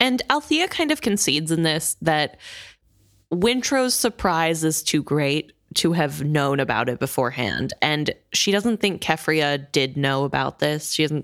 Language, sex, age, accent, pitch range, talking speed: English, female, 20-39, American, 150-205 Hz, 160 wpm